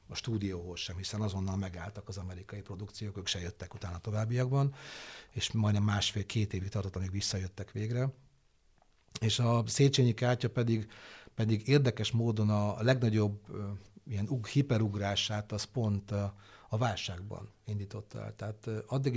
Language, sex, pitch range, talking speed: Hungarian, male, 100-120 Hz, 135 wpm